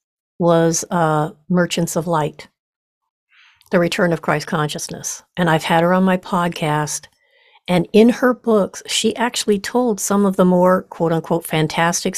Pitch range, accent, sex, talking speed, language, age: 170-205 Hz, American, female, 150 wpm, English, 50-69